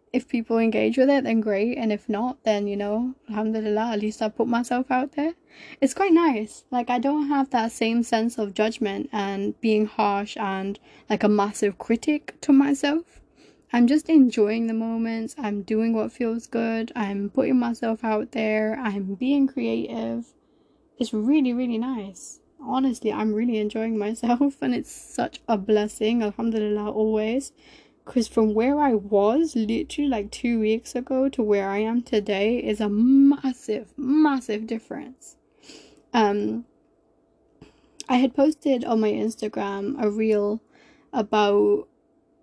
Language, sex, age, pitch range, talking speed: English, female, 10-29, 215-260 Hz, 150 wpm